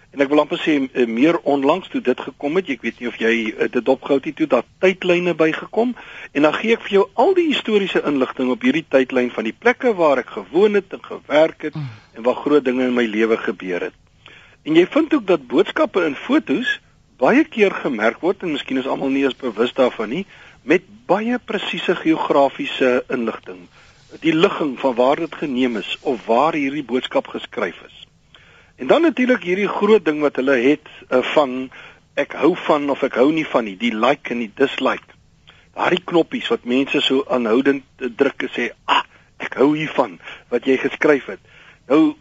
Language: Dutch